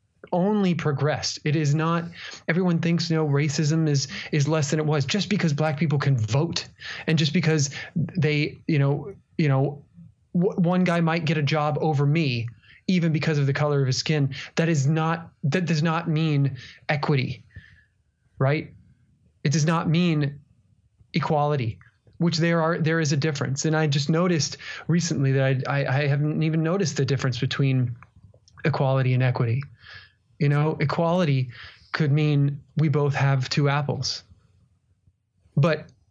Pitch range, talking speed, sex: 130-165 Hz, 160 wpm, male